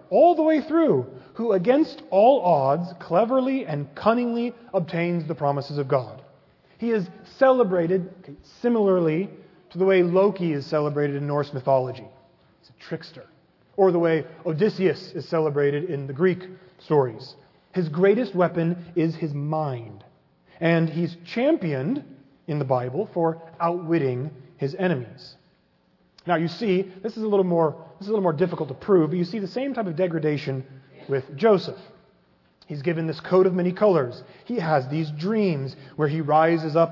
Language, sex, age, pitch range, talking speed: English, male, 30-49, 145-190 Hz, 160 wpm